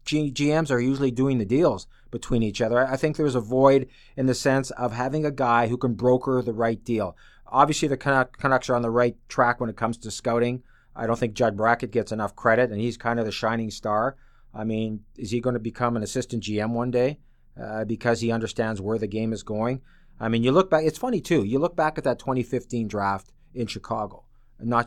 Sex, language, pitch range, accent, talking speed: male, English, 110-130 Hz, American, 225 wpm